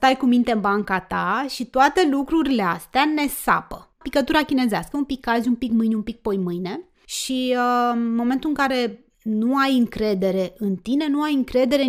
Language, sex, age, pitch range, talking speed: Romanian, female, 20-39, 220-265 Hz, 190 wpm